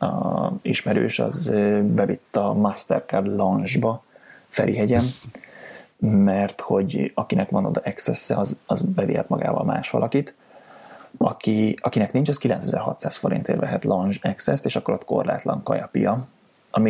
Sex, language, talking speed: male, Hungarian, 125 wpm